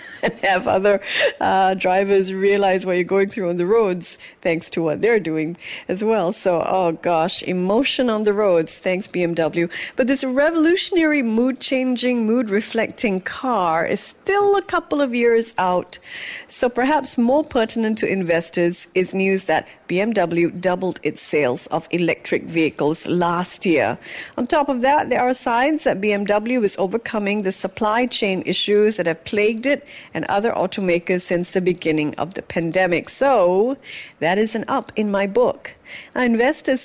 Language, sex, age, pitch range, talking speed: English, female, 50-69, 180-250 Hz, 160 wpm